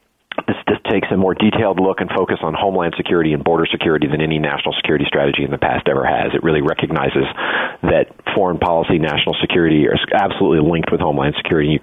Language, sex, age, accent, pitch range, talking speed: English, male, 40-59, American, 85-100 Hz, 205 wpm